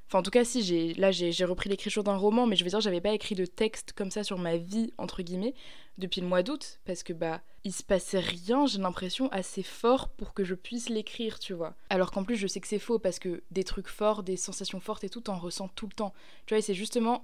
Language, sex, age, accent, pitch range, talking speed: French, female, 20-39, French, 185-215 Hz, 275 wpm